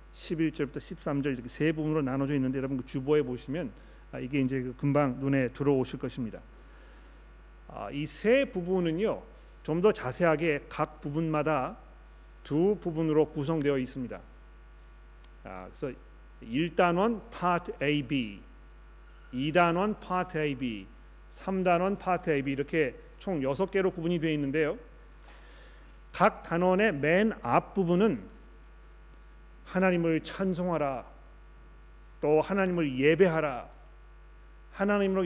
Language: Korean